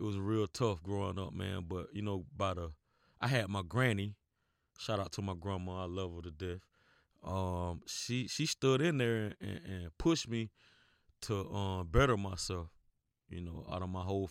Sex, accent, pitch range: male, American, 90-105 Hz